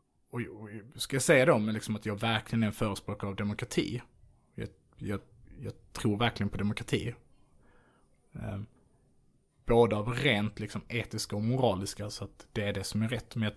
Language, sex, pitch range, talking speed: Swedish, male, 100-120 Hz, 175 wpm